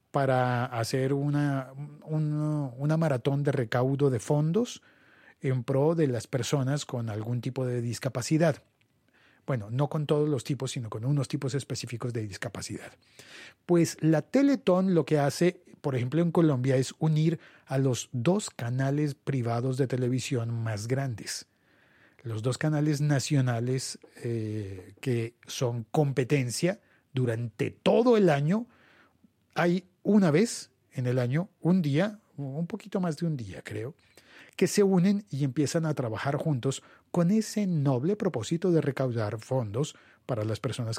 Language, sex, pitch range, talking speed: Spanish, male, 120-155 Hz, 145 wpm